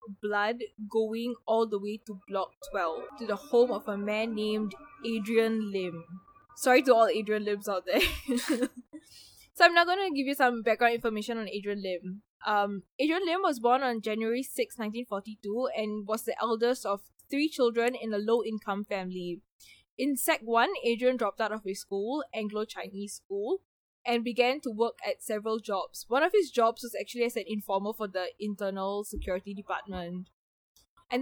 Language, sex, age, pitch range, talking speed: English, female, 10-29, 205-245 Hz, 170 wpm